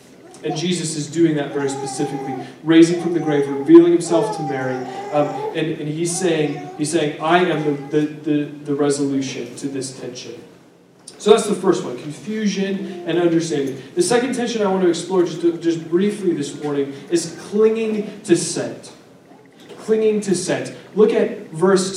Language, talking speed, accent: English, 165 wpm, American